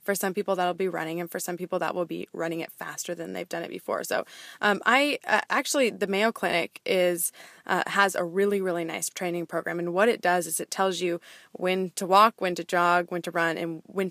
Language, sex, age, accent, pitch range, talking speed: English, female, 20-39, American, 180-215 Hz, 240 wpm